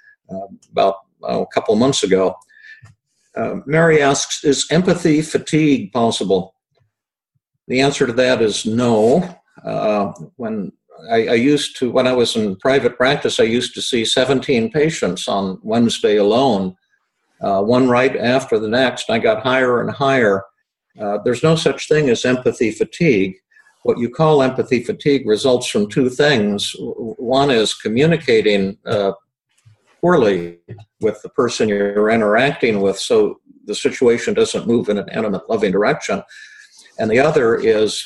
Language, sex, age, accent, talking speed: English, male, 50-69, American, 150 wpm